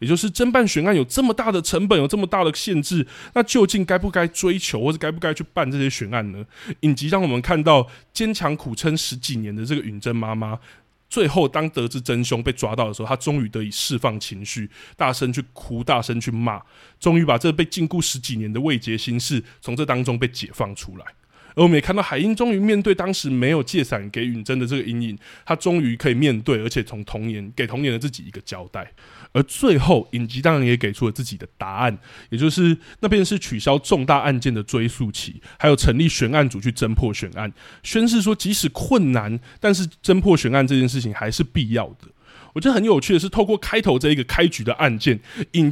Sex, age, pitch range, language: male, 20-39, 120-175 Hz, Chinese